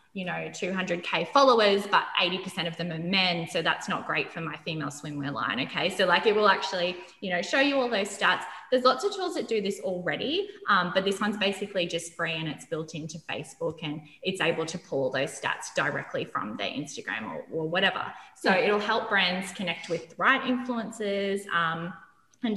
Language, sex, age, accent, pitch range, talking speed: English, female, 20-39, Australian, 165-205 Hz, 205 wpm